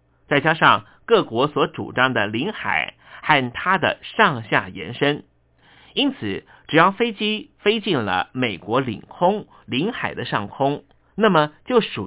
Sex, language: male, Chinese